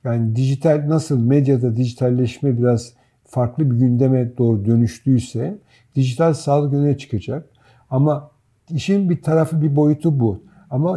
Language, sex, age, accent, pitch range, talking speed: Turkish, male, 50-69, native, 125-150 Hz, 125 wpm